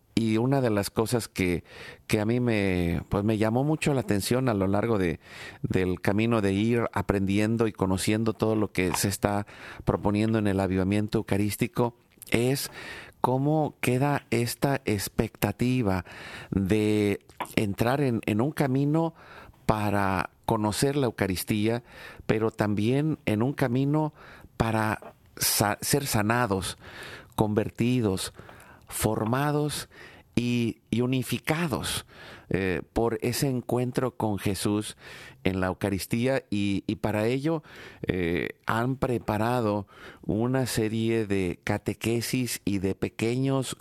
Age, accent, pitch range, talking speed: 40-59, Mexican, 100-125 Hz, 120 wpm